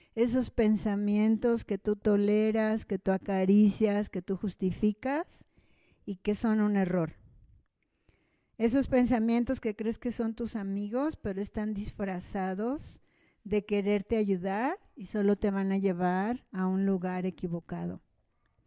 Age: 50-69